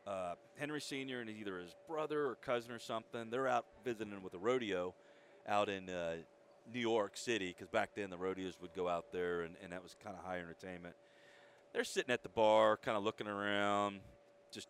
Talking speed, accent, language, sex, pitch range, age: 205 wpm, American, English, male, 95-120 Hz, 30-49